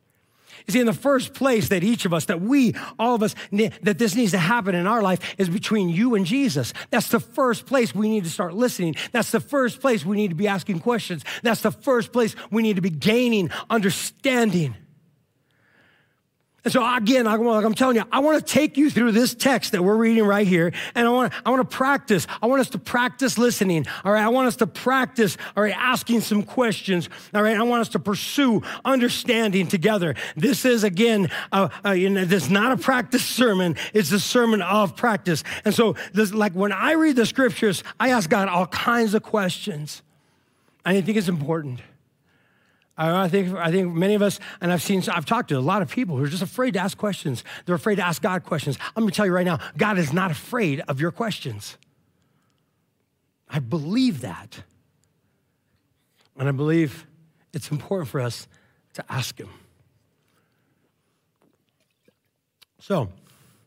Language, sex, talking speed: English, male, 190 wpm